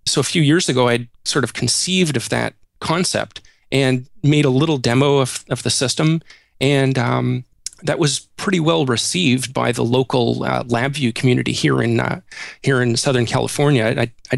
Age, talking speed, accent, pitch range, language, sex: 30-49, 175 wpm, American, 125-150 Hz, English, male